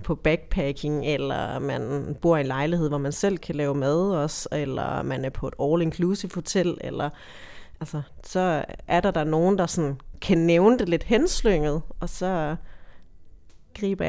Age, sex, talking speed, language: 30-49, female, 160 wpm, Danish